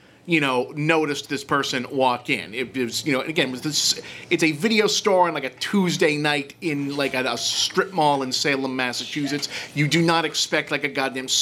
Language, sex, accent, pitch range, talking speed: English, male, American, 125-170 Hz, 210 wpm